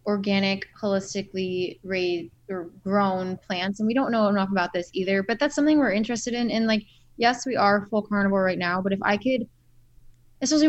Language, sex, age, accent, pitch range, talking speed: English, female, 20-39, American, 190-225 Hz, 190 wpm